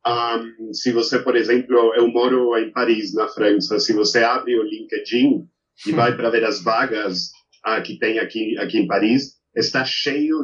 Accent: Brazilian